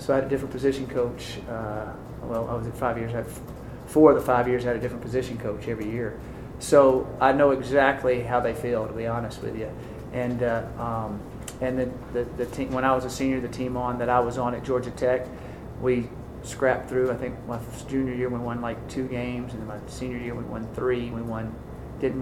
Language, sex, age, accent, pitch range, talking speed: English, male, 40-59, American, 120-135 Hz, 240 wpm